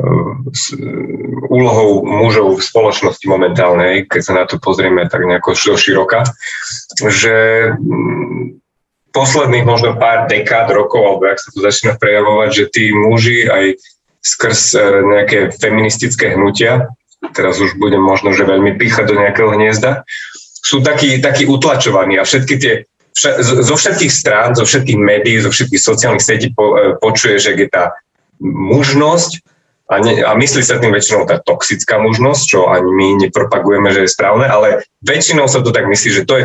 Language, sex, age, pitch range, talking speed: Slovak, male, 30-49, 105-135 Hz, 155 wpm